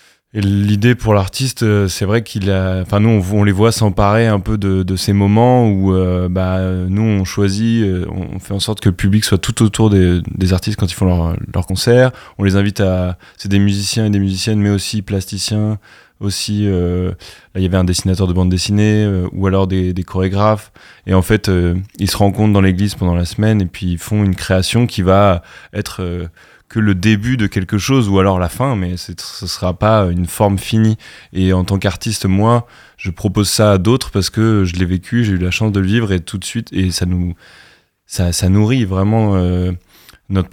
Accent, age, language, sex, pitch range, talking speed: French, 20-39, French, male, 95-105 Hz, 225 wpm